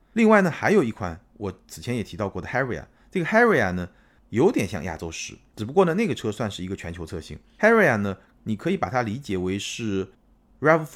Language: Chinese